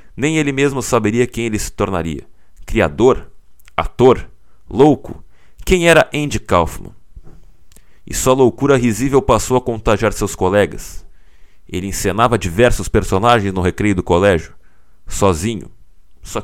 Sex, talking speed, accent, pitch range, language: male, 125 wpm, Brazilian, 90-125 Hz, Portuguese